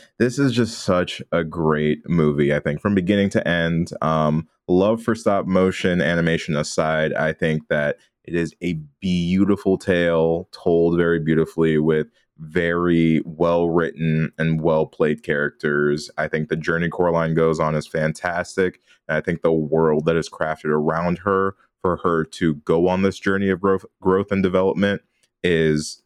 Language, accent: English, American